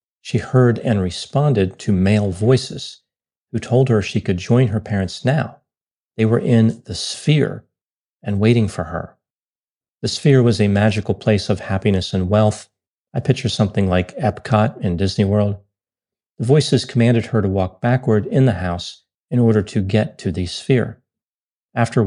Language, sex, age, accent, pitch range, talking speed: English, male, 40-59, American, 95-115 Hz, 165 wpm